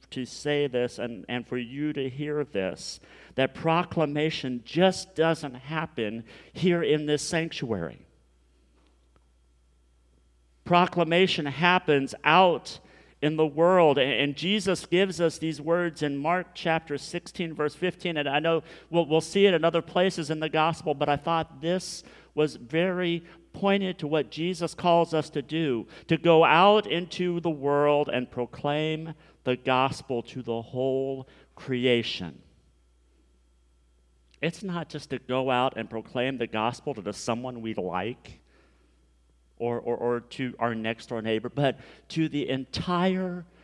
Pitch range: 120-170 Hz